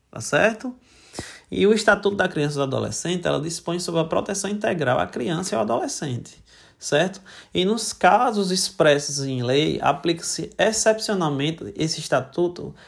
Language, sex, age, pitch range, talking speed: Portuguese, male, 20-39, 140-200 Hz, 150 wpm